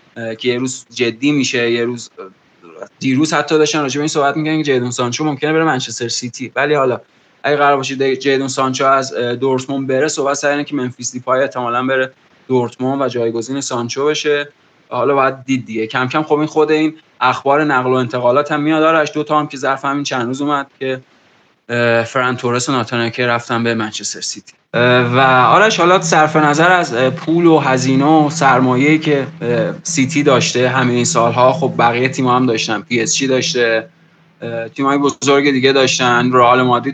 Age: 20-39